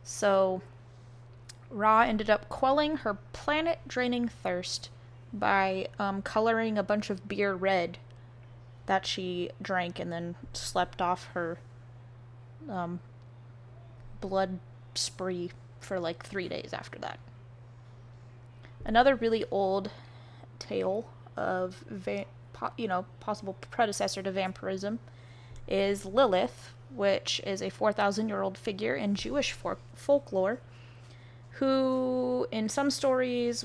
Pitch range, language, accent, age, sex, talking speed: 120-200 Hz, English, American, 20-39, female, 105 wpm